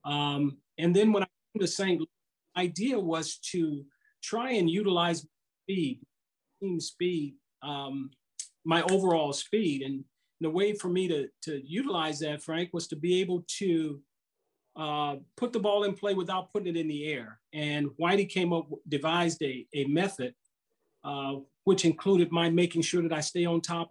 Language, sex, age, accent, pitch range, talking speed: English, male, 40-59, American, 150-185 Hz, 170 wpm